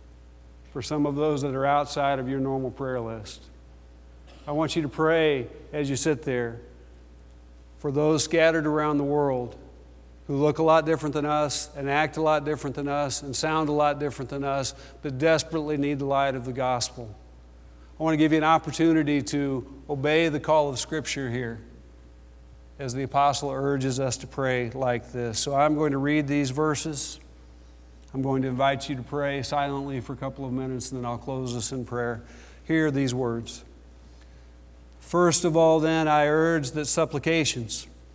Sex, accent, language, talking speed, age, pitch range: male, American, English, 180 wpm, 50-69, 115-150 Hz